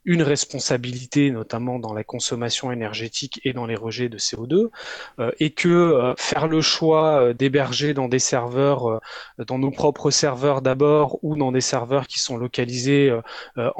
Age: 20-39